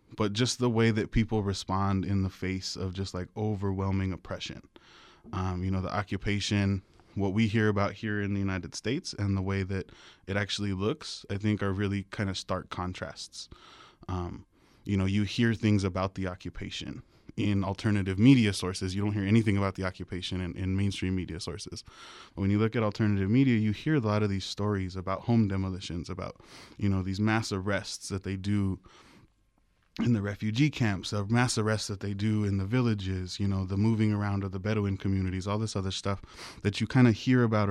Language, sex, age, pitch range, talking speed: English, male, 20-39, 95-105 Hz, 200 wpm